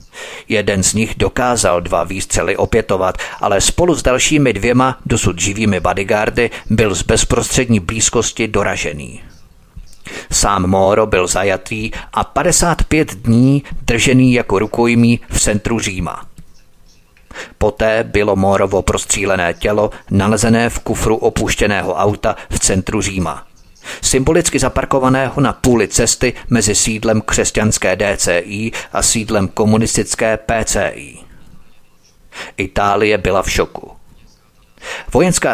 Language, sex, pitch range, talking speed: Czech, male, 100-125 Hz, 110 wpm